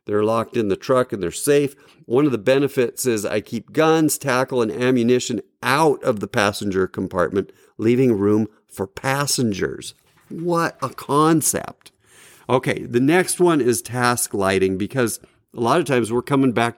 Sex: male